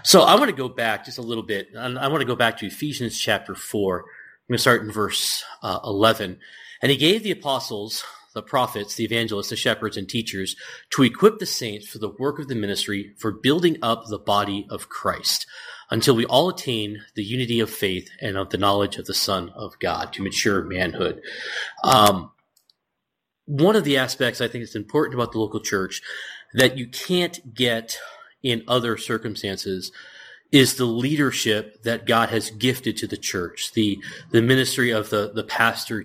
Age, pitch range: 30-49, 110-140 Hz